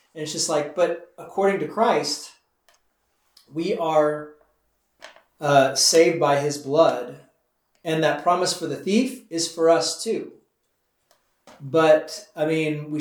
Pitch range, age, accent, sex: 135-165 Hz, 30-49, American, male